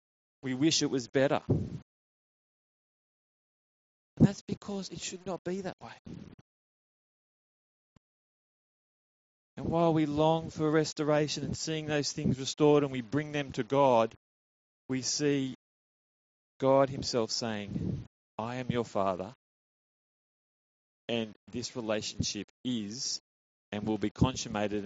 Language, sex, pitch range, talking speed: English, male, 115-175 Hz, 115 wpm